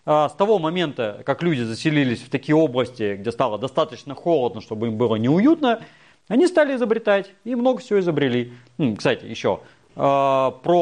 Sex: male